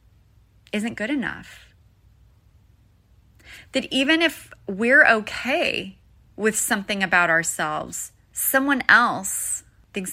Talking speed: 90 wpm